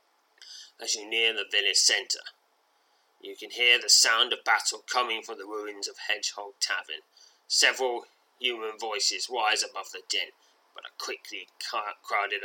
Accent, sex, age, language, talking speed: British, male, 20-39, English, 155 wpm